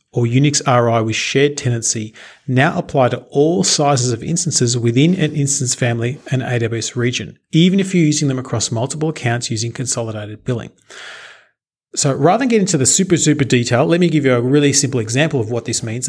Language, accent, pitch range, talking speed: English, Australian, 120-150 Hz, 195 wpm